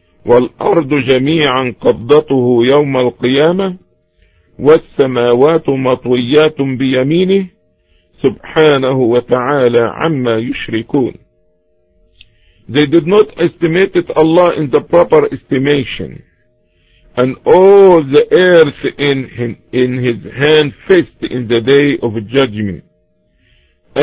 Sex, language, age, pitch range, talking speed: male, English, 50-69, 100-160 Hz, 90 wpm